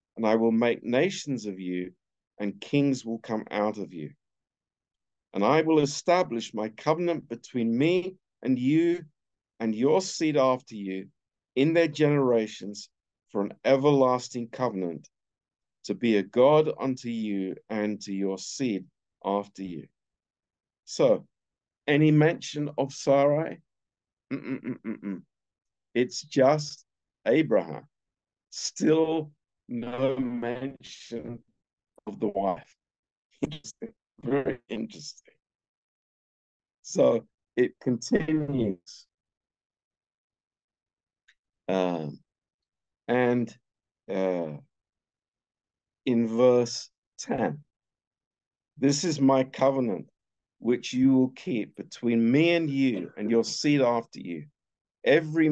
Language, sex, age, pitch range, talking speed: Romanian, male, 50-69, 100-140 Hz, 100 wpm